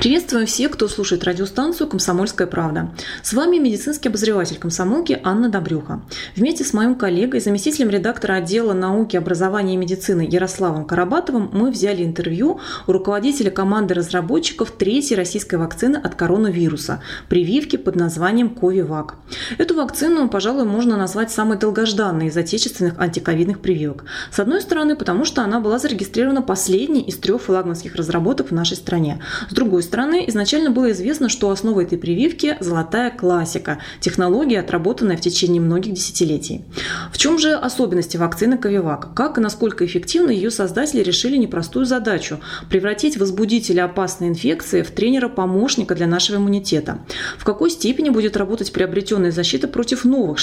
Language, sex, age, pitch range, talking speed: Russian, female, 20-39, 180-245 Hz, 150 wpm